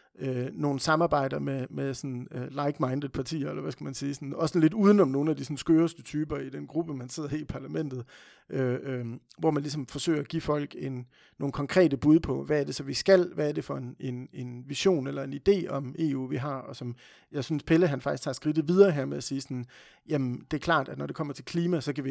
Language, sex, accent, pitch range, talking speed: Danish, male, native, 135-155 Hz, 260 wpm